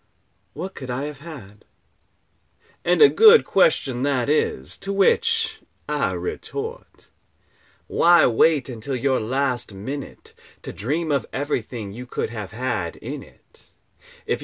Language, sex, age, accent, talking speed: English, male, 30-49, American, 135 wpm